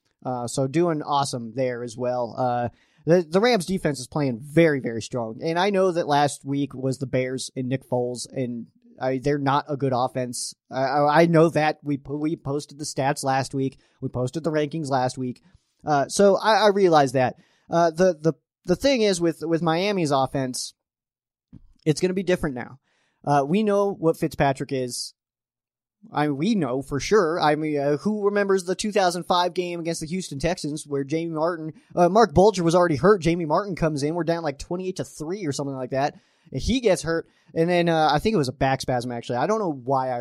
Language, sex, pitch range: English, male, 130-180 Hz